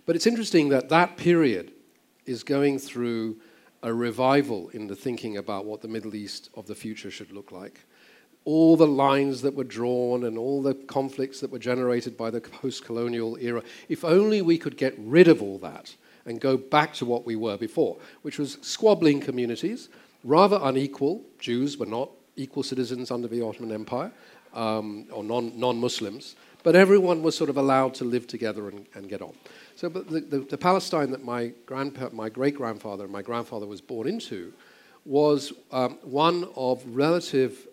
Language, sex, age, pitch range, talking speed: English, male, 50-69, 115-145 Hz, 180 wpm